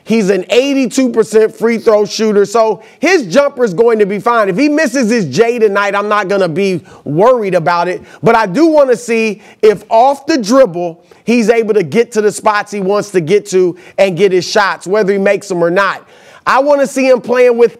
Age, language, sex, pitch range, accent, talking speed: 30-49, English, male, 200-235 Hz, American, 225 wpm